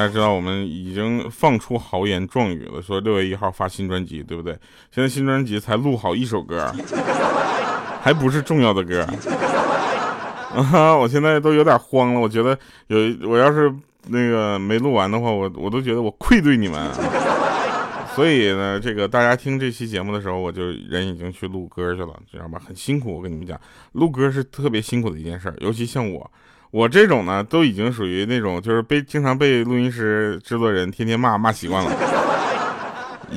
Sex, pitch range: male, 95-135 Hz